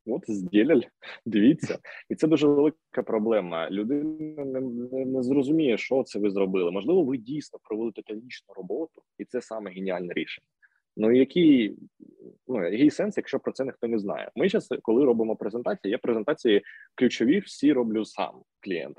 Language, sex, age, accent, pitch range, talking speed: Ukrainian, male, 20-39, native, 100-140 Hz, 160 wpm